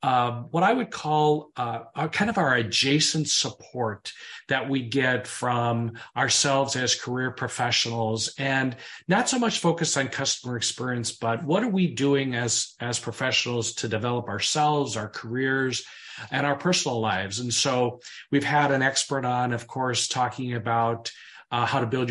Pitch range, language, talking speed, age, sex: 120-140 Hz, English, 160 wpm, 40-59, male